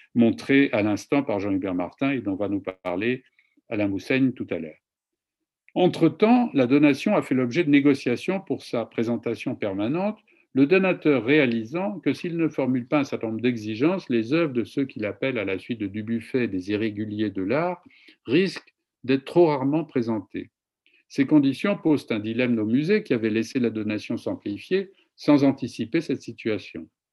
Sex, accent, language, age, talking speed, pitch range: male, French, French, 50-69, 170 wpm, 115-150 Hz